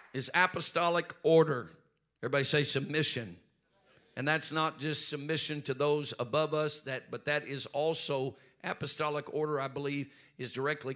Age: 50-69